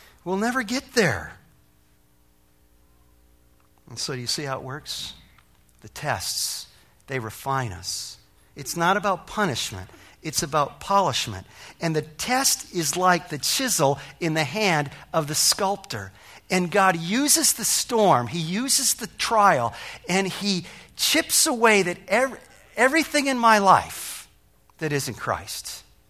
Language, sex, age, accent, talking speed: English, male, 50-69, American, 135 wpm